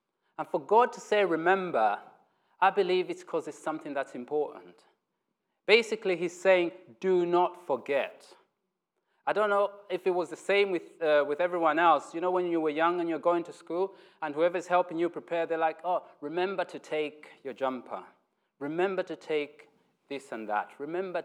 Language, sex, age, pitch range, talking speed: English, male, 30-49, 150-185 Hz, 180 wpm